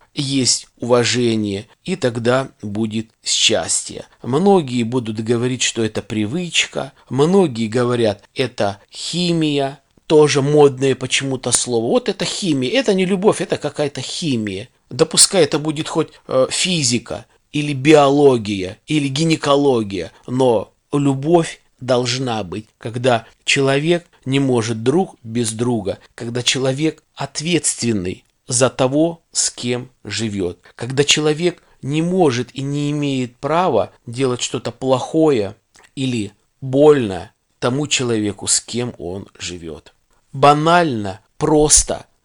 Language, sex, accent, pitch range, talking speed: Russian, male, native, 110-150 Hz, 110 wpm